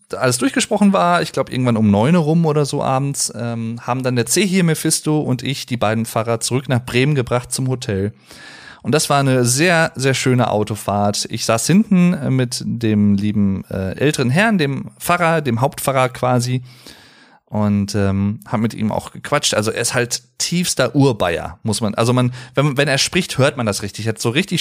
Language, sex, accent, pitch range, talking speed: German, male, German, 110-150 Hz, 195 wpm